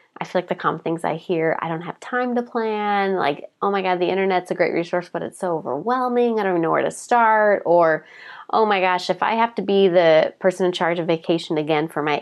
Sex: female